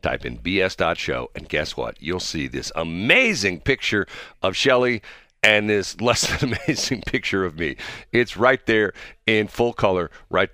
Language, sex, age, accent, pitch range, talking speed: English, male, 50-69, American, 90-130 Hz, 160 wpm